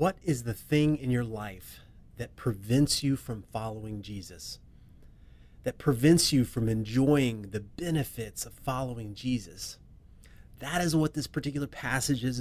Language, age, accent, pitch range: English, 30-49, American, 115-160 Hz